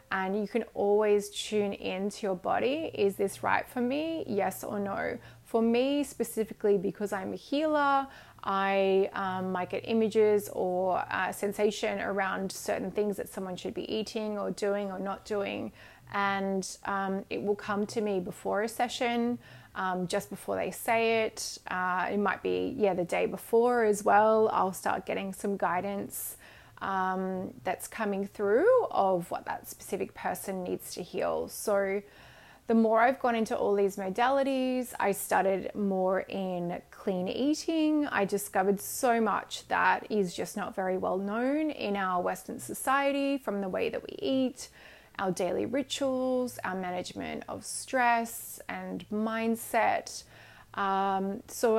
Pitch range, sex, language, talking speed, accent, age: 195-235 Hz, female, English, 155 wpm, Australian, 20-39